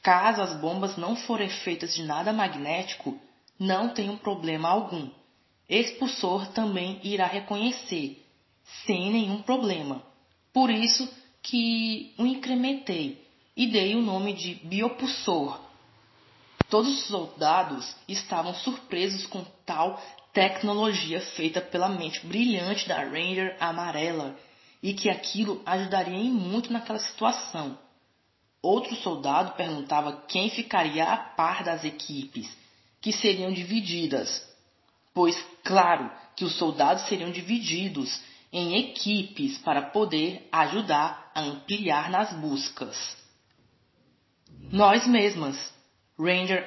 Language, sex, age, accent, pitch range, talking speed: Portuguese, female, 20-39, Brazilian, 165-215 Hz, 110 wpm